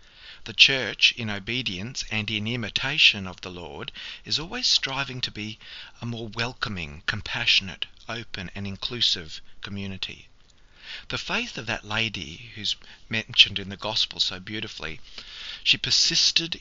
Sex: male